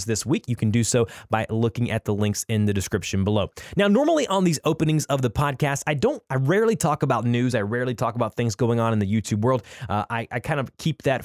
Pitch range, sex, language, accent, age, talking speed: 110-140 Hz, male, English, American, 20-39, 255 wpm